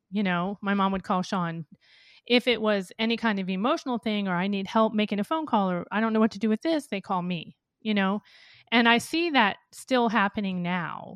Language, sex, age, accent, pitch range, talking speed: English, female, 30-49, American, 190-230 Hz, 235 wpm